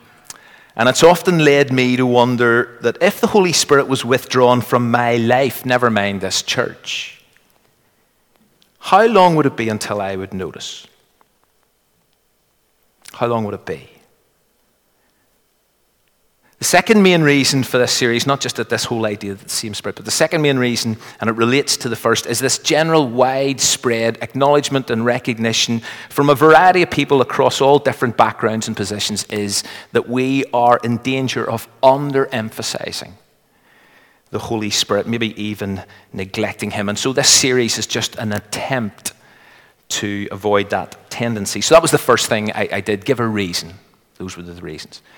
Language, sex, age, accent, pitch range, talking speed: English, male, 40-59, British, 105-135 Hz, 165 wpm